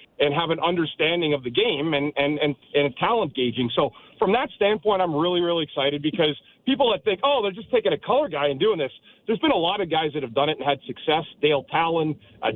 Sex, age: male, 40-59